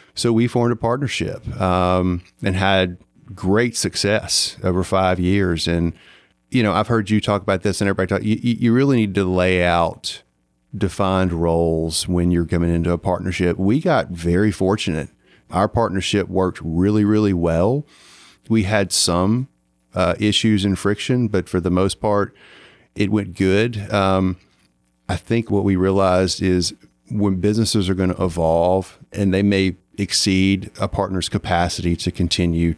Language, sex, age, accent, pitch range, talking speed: English, male, 30-49, American, 85-100 Hz, 160 wpm